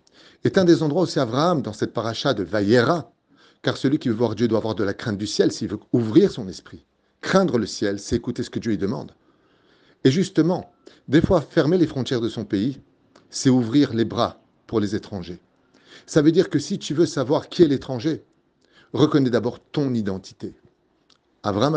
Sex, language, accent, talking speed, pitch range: male, French, French, 200 wpm, 110-145 Hz